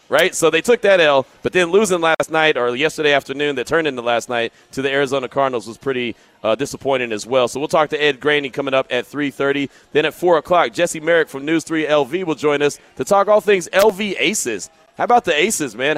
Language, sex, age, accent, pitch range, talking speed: English, male, 30-49, American, 140-175 Hz, 235 wpm